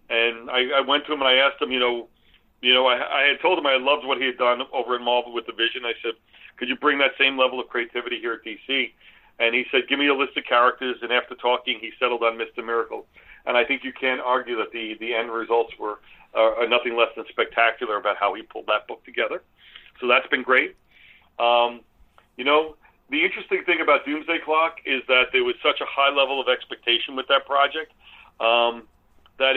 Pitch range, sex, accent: 120-140 Hz, male, American